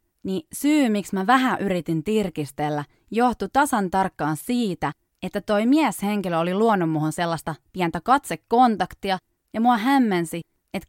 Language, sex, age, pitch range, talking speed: Finnish, female, 20-39, 160-230 Hz, 130 wpm